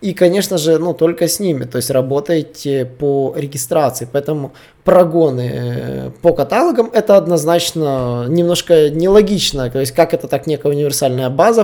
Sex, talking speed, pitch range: male, 145 wpm, 135-175 Hz